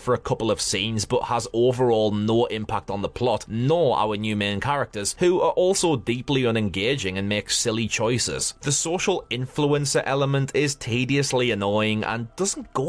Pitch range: 105-145 Hz